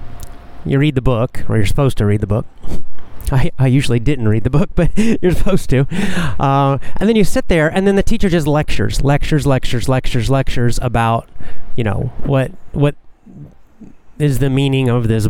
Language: English